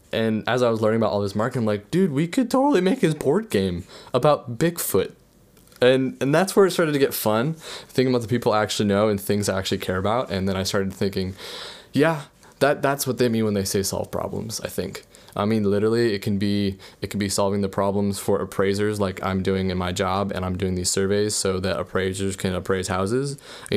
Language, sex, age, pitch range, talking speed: English, male, 20-39, 100-130 Hz, 230 wpm